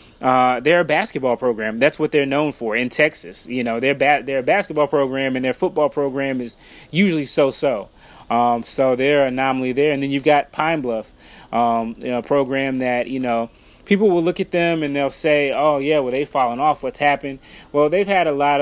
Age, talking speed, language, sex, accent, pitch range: 20-39, 220 wpm, English, male, American, 130-150 Hz